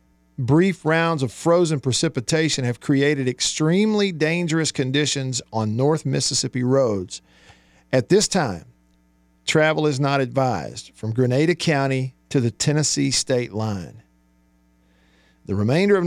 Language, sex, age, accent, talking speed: English, male, 50-69, American, 120 wpm